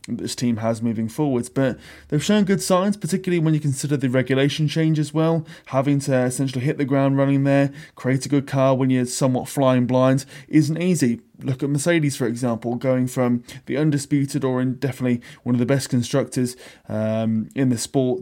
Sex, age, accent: male, 20-39, British